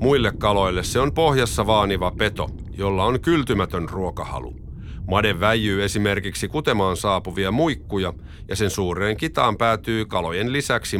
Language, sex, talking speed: Finnish, male, 130 wpm